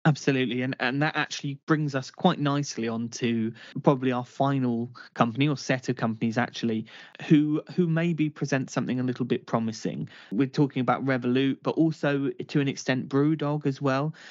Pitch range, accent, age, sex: 120-140 Hz, British, 20-39, male